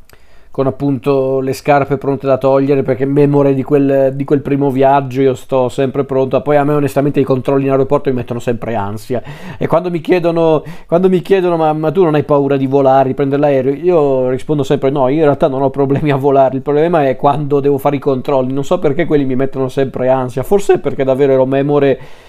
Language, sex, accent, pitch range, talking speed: Italian, male, native, 130-145 Hz, 220 wpm